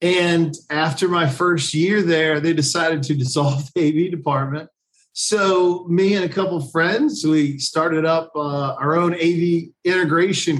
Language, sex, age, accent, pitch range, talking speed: English, male, 40-59, American, 140-170 Hz, 160 wpm